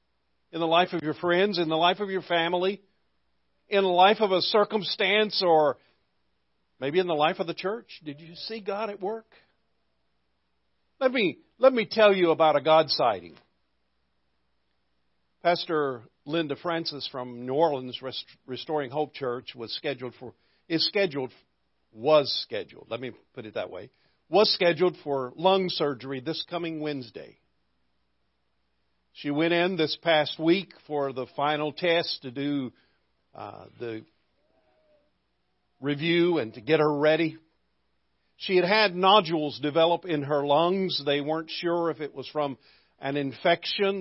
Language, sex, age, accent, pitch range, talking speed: English, male, 50-69, American, 125-175 Hz, 150 wpm